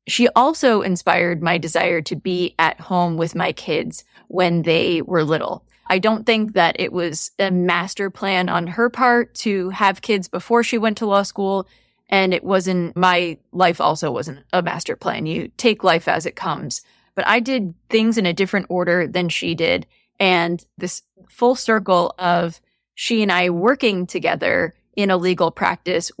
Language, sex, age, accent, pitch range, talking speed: English, female, 20-39, American, 175-195 Hz, 180 wpm